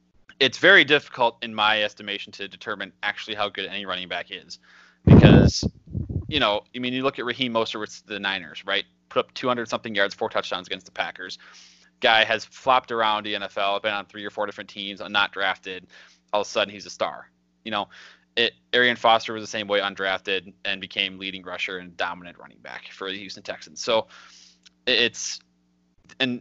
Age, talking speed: 20-39, 200 wpm